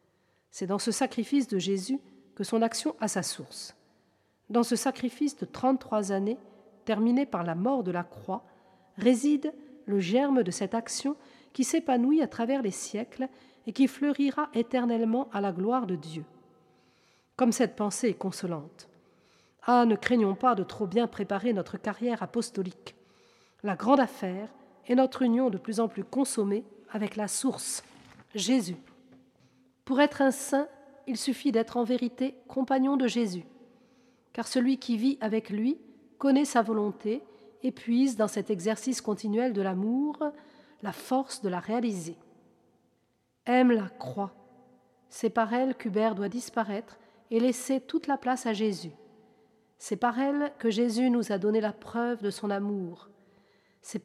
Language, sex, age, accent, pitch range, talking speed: French, female, 40-59, French, 200-255 Hz, 155 wpm